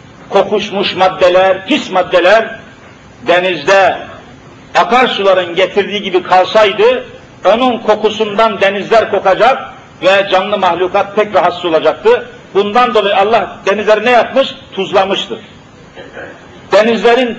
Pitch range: 180-230 Hz